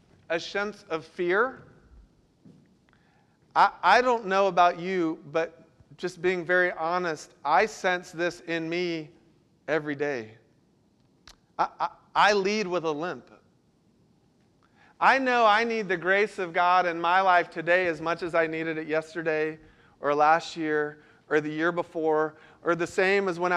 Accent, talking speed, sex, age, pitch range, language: American, 155 wpm, male, 40-59, 150-180 Hz, English